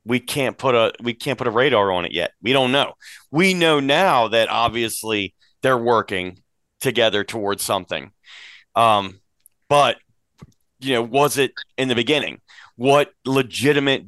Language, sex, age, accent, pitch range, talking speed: English, male, 30-49, American, 110-135 Hz, 155 wpm